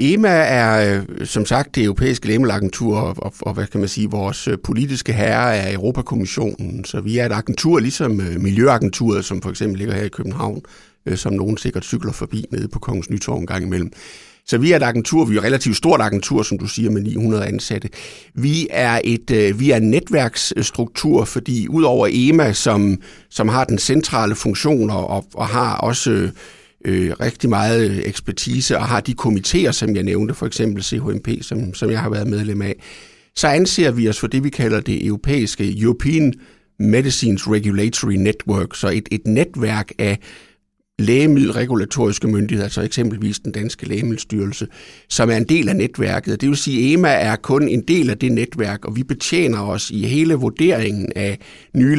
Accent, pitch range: Danish, 105-125 Hz